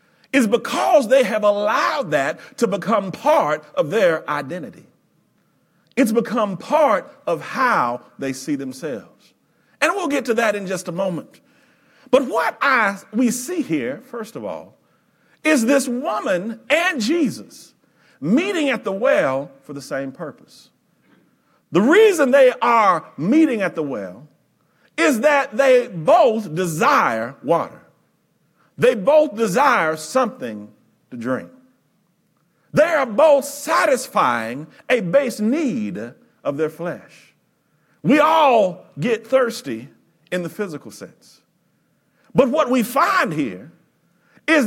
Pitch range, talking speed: 195-285 Hz, 130 wpm